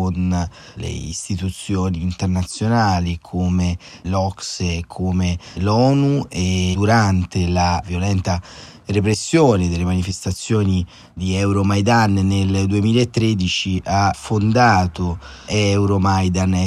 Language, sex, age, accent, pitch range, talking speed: Italian, male, 30-49, native, 90-105 Hz, 85 wpm